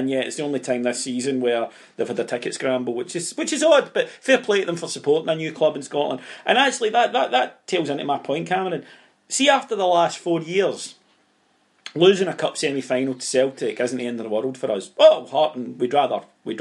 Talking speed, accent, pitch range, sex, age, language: 240 wpm, British, 135-195 Hz, male, 40-59, English